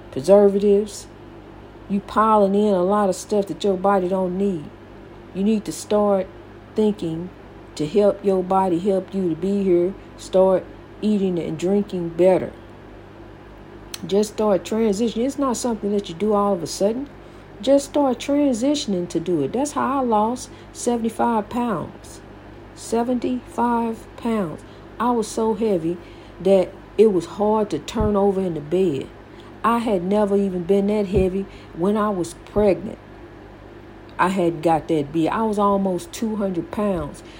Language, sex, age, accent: English, female, 50-69, American